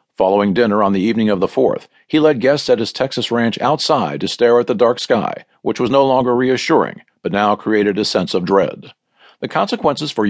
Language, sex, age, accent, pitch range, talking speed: English, male, 50-69, American, 105-140 Hz, 215 wpm